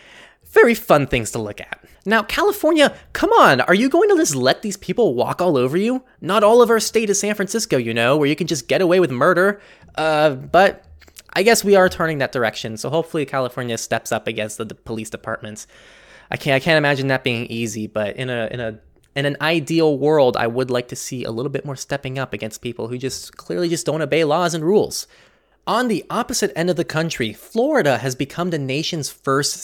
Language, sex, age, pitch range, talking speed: English, male, 20-39, 120-180 Hz, 215 wpm